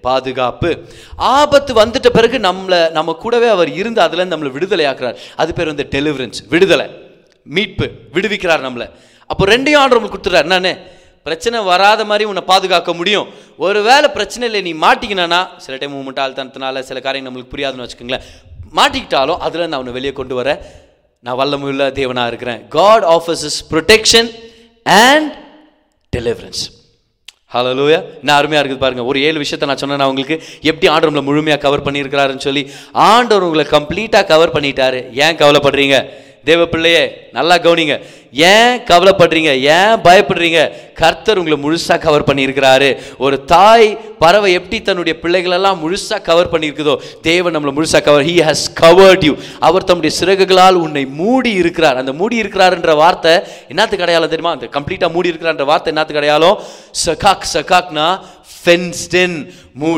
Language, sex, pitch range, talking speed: Tamil, male, 140-190 Hz, 50 wpm